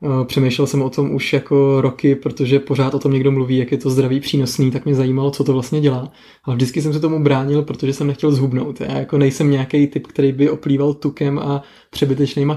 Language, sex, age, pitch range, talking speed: Czech, male, 20-39, 135-145 Hz, 220 wpm